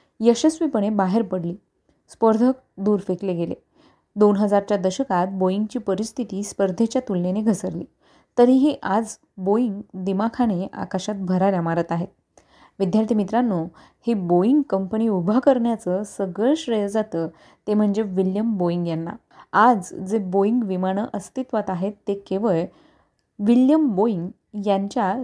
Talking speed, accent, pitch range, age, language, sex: 115 wpm, native, 190-240 Hz, 20-39, Marathi, female